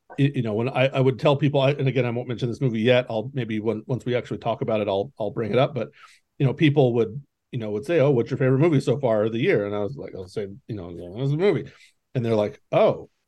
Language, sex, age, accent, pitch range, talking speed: English, male, 40-59, American, 115-150 Hz, 300 wpm